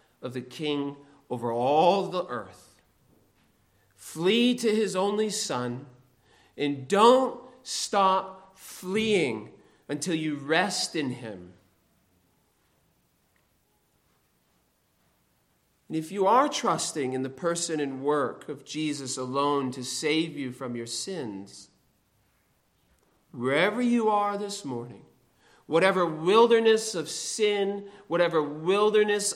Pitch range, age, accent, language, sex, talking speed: 125-200 Hz, 40-59, American, English, male, 105 wpm